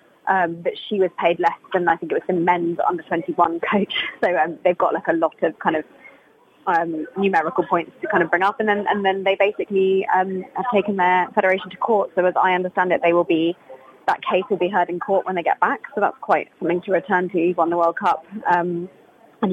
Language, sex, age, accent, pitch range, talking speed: English, female, 20-39, British, 175-200 Hz, 260 wpm